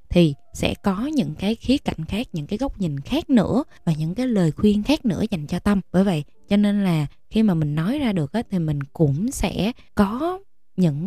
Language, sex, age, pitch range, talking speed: Vietnamese, female, 20-39, 170-225 Hz, 230 wpm